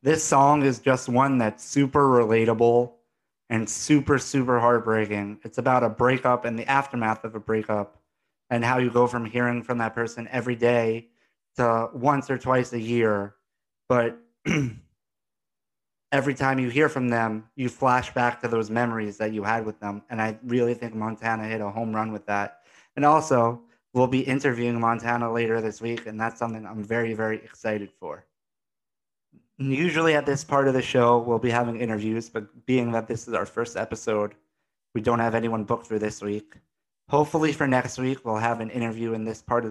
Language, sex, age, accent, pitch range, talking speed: English, male, 30-49, American, 110-130 Hz, 185 wpm